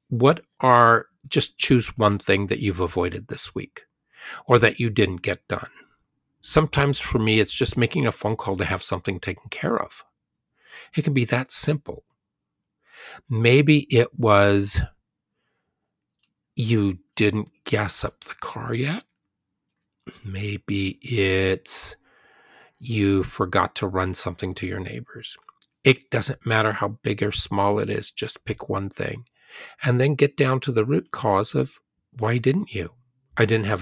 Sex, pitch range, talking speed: male, 95-130 Hz, 150 wpm